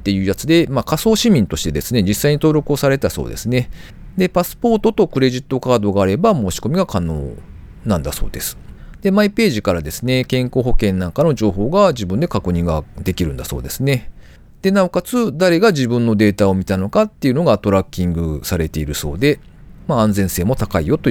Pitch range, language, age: 90-145 Hz, Japanese, 40-59